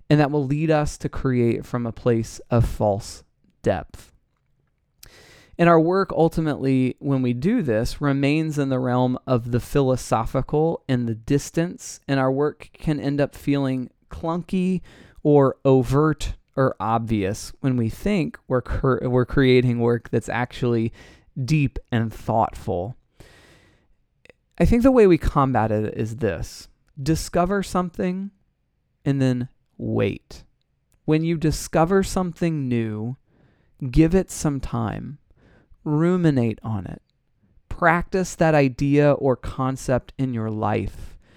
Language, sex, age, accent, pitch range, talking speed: English, male, 20-39, American, 120-160 Hz, 130 wpm